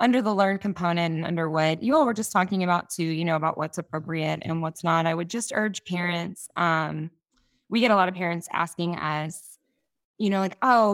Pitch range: 160-210 Hz